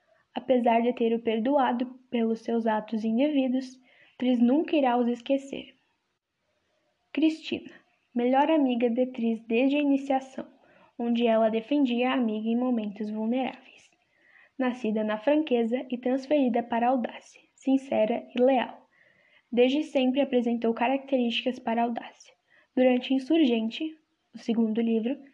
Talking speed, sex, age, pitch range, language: 125 wpm, female, 10-29, 230-275 Hz, Portuguese